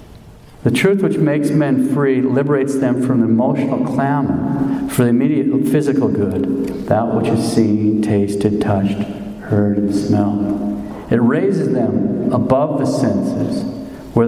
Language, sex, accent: English, male, American